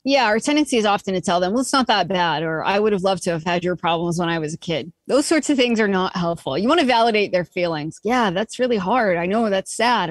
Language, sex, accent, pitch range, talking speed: English, female, American, 190-245 Hz, 290 wpm